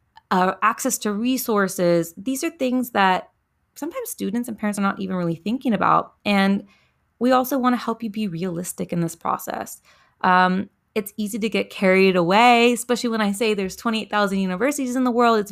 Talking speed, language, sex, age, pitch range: 185 wpm, English, female, 20-39, 185-245 Hz